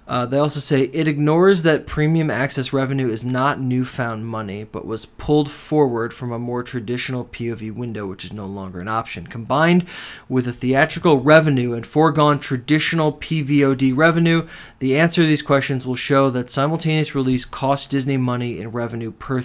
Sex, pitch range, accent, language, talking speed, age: male, 120-150 Hz, American, English, 175 wpm, 20-39